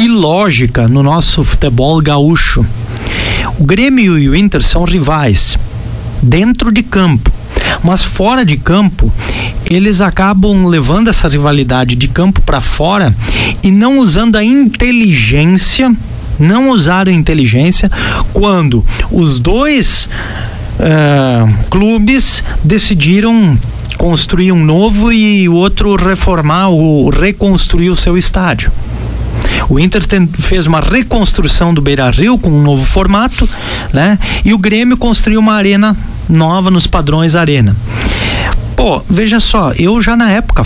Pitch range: 135-205 Hz